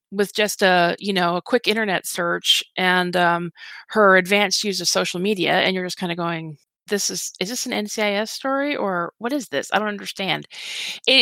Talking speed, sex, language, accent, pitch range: 205 wpm, female, English, American, 180-230 Hz